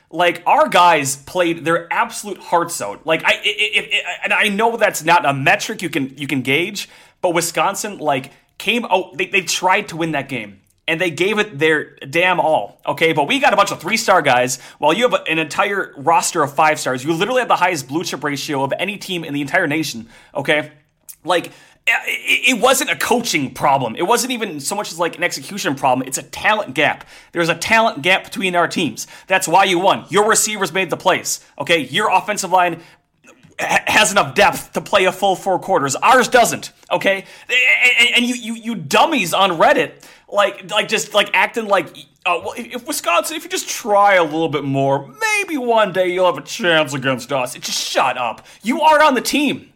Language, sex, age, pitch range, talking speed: English, male, 30-49, 155-215 Hz, 210 wpm